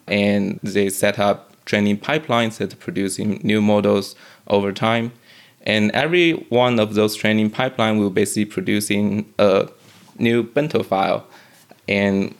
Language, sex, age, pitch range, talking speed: English, male, 20-39, 100-115 Hz, 135 wpm